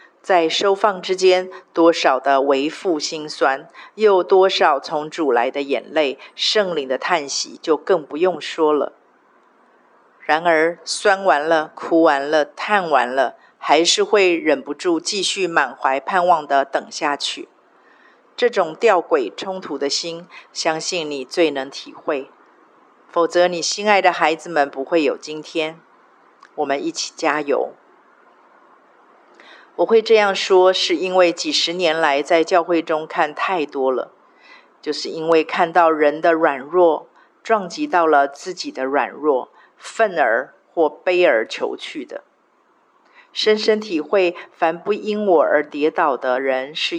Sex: female